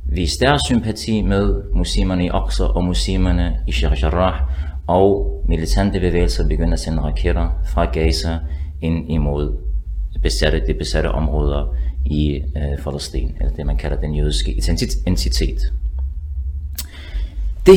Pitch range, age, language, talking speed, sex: 70-100 Hz, 30-49, Danish, 120 wpm, male